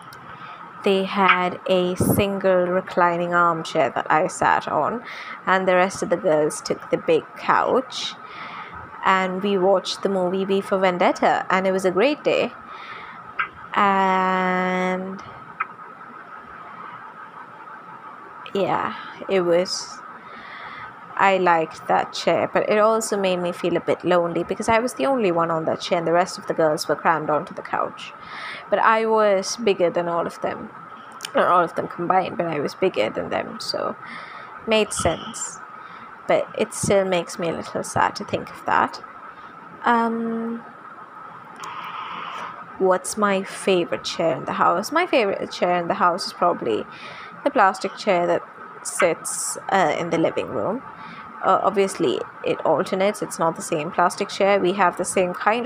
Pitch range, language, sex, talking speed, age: 180-215 Hz, English, female, 160 wpm, 20-39